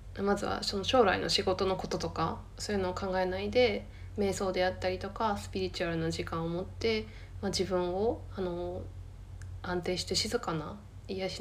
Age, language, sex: 20-39, Japanese, female